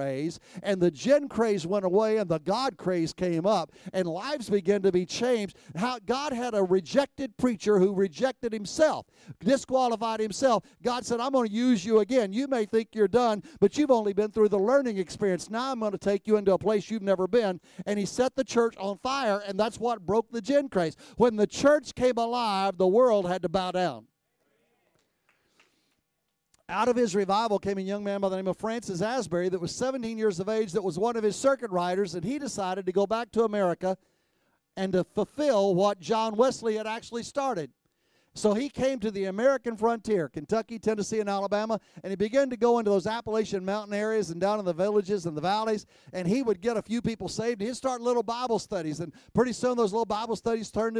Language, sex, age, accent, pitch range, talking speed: English, male, 50-69, American, 195-235 Hz, 215 wpm